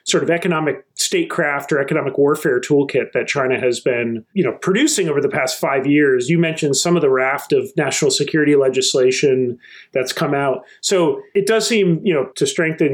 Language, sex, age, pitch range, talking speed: English, male, 40-59, 145-190 Hz, 190 wpm